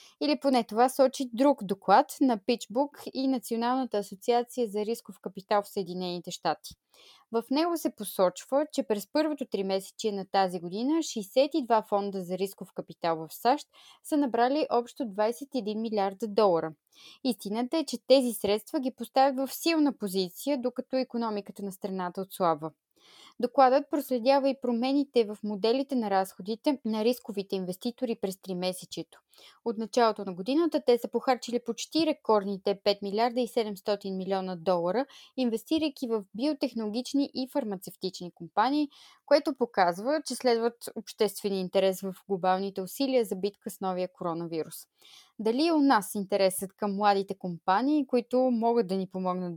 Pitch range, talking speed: 195-265 Hz, 140 wpm